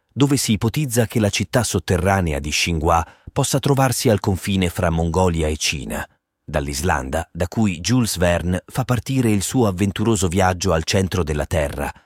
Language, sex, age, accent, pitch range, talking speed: Italian, male, 30-49, native, 80-110 Hz, 160 wpm